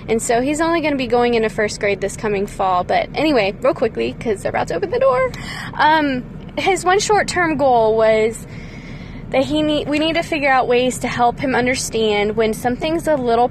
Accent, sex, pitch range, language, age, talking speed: American, female, 215-270 Hz, English, 10-29, 215 wpm